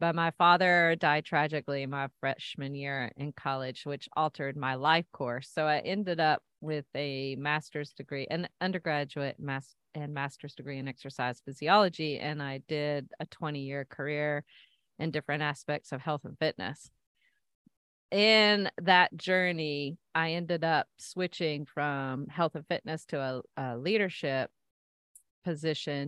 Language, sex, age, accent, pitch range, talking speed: English, female, 40-59, American, 135-160 Hz, 140 wpm